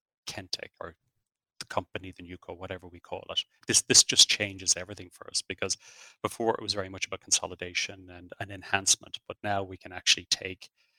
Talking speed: 185 wpm